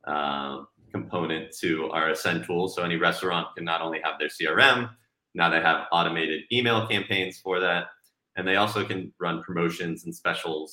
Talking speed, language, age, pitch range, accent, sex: 175 wpm, English, 30-49, 80-100 Hz, American, male